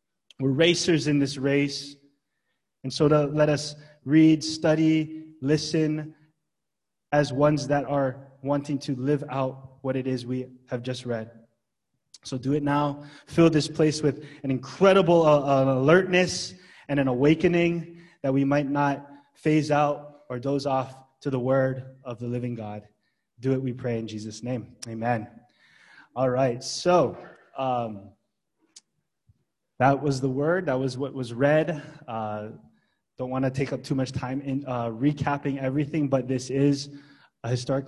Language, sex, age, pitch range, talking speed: English, male, 20-39, 130-155 Hz, 155 wpm